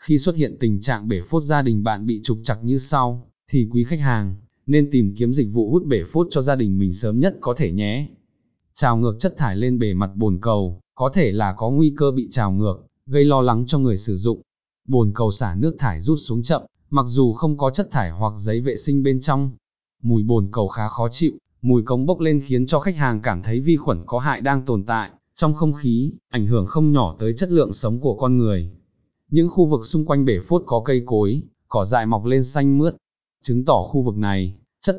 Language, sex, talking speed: Vietnamese, male, 240 wpm